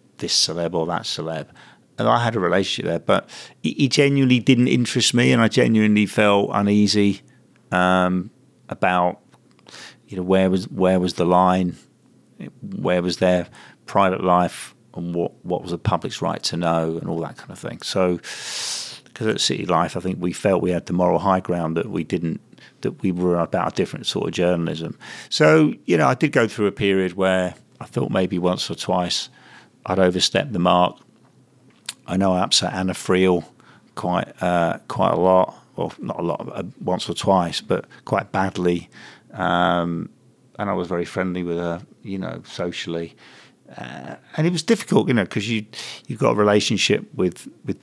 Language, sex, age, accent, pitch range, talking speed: English, male, 50-69, British, 90-110 Hz, 185 wpm